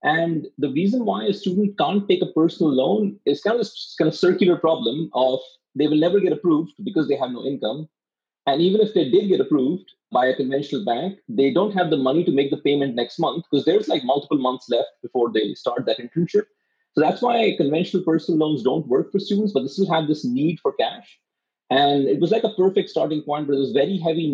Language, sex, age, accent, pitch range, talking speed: English, male, 30-49, Indian, 140-195 Hz, 230 wpm